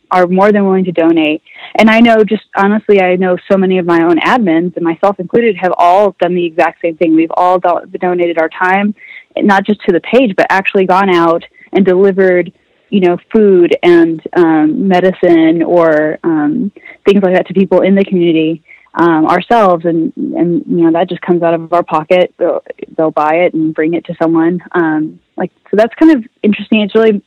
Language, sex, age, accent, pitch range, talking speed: English, female, 20-39, American, 165-195 Hz, 200 wpm